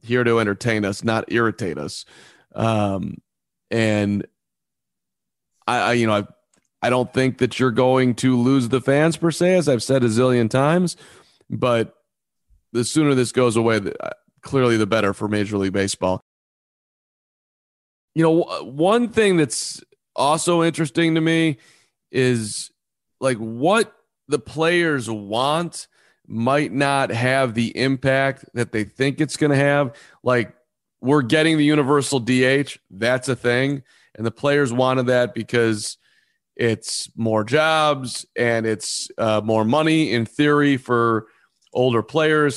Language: English